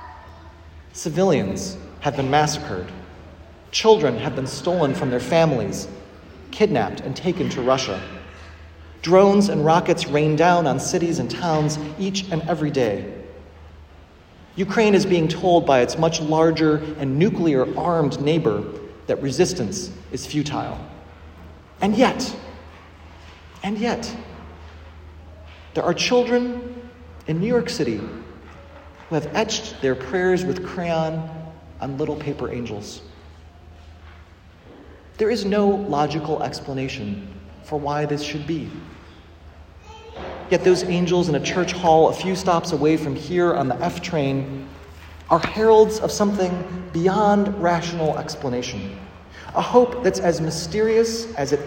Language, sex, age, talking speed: English, male, 40-59, 125 wpm